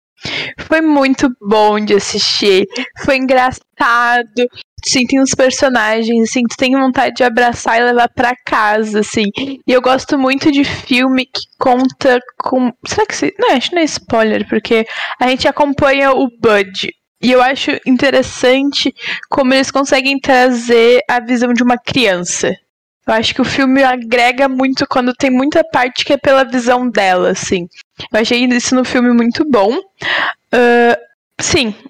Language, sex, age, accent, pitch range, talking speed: Portuguese, female, 10-29, Brazilian, 225-270 Hz, 160 wpm